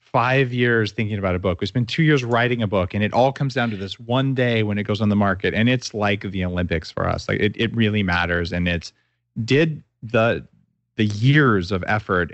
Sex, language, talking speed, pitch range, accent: male, English, 235 wpm, 95-125 Hz, American